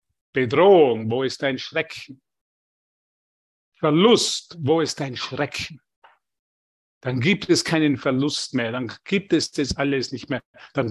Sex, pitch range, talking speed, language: male, 130-170 Hz, 130 wpm, German